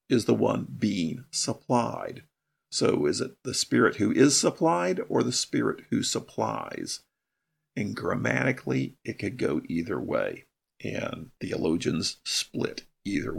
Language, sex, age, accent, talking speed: English, male, 50-69, American, 130 wpm